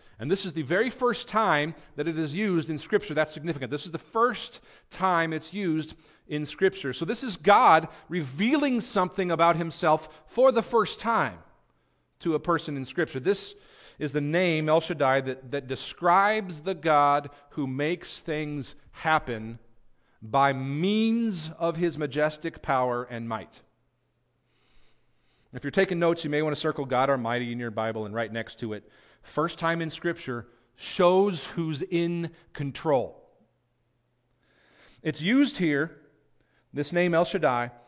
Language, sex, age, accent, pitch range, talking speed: English, male, 40-59, American, 130-175 Hz, 155 wpm